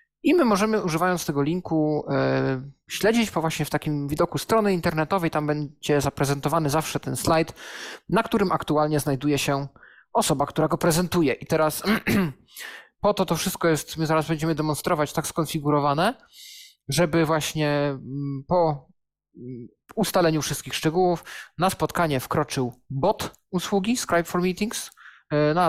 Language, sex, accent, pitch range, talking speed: Polish, male, native, 145-180 Hz, 130 wpm